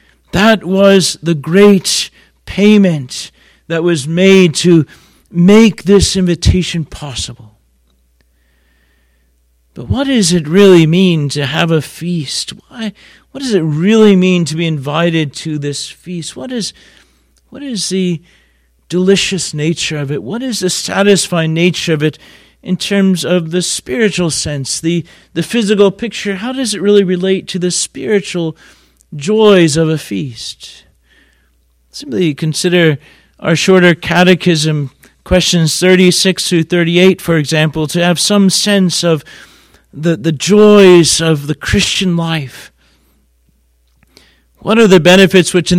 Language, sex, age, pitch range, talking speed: English, male, 40-59, 150-185 Hz, 135 wpm